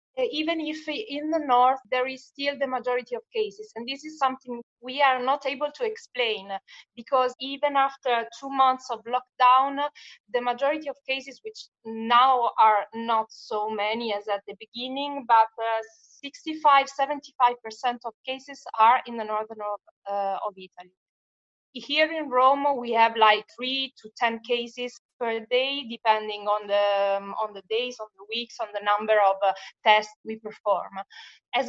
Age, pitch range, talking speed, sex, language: 20-39, 220-275 Hz, 165 wpm, female, English